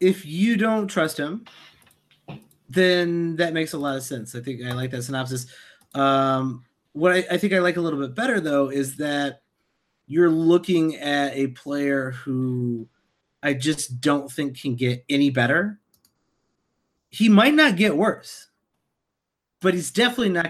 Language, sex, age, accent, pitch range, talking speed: English, male, 30-49, American, 135-165 Hz, 160 wpm